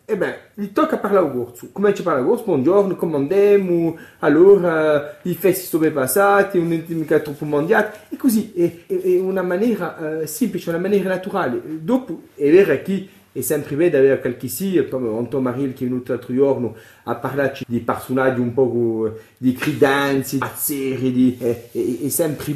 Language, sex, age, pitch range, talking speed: French, male, 30-49, 130-190 Hz, 175 wpm